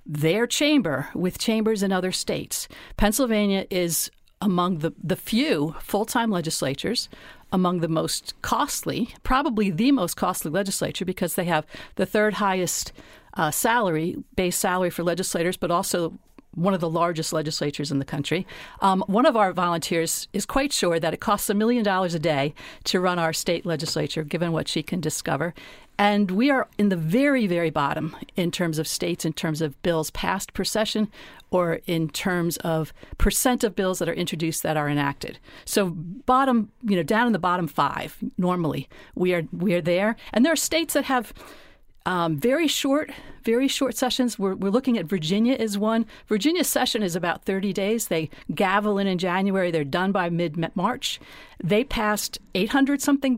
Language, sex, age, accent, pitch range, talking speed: English, female, 50-69, American, 170-225 Hz, 175 wpm